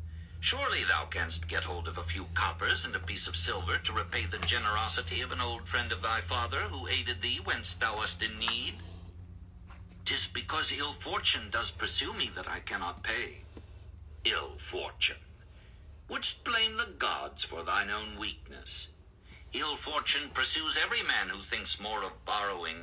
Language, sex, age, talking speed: English, male, 60-79, 170 wpm